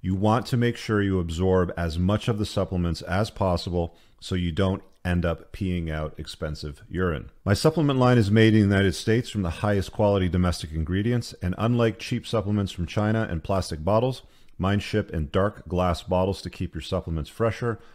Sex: male